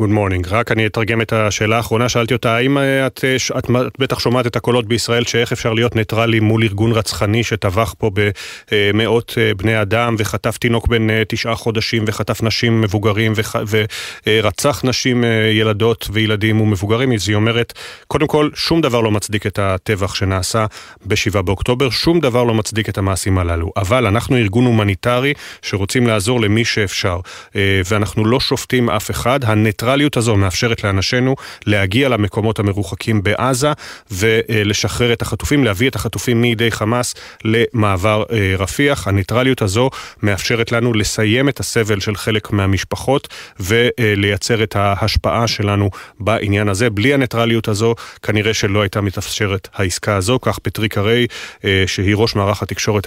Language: Hebrew